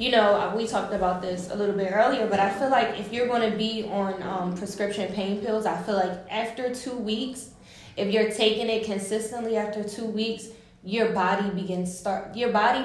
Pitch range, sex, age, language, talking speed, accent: 200-245 Hz, female, 10-29, English, 205 wpm, American